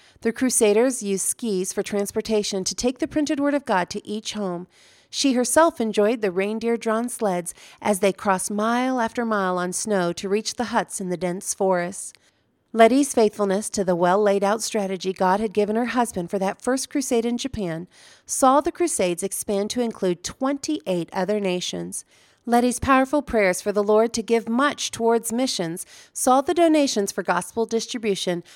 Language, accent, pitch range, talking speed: English, American, 185-235 Hz, 170 wpm